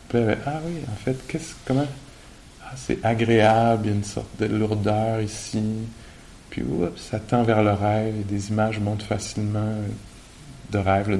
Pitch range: 100-125 Hz